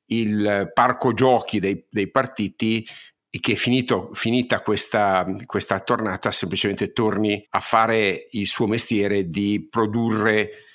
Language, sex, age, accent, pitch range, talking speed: Italian, male, 50-69, native, 100-115 Hz, 115 wpm